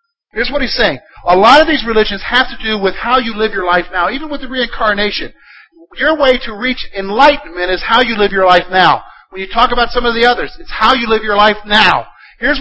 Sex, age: male, 50-69